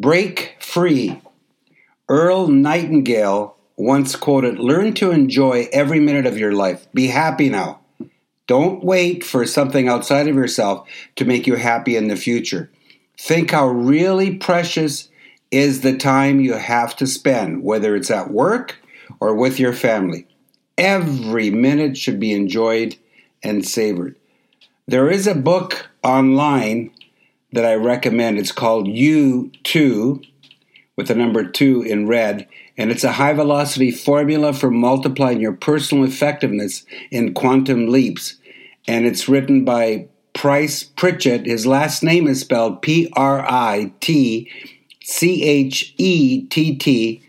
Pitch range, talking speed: 120-145 Hz, 125 wpm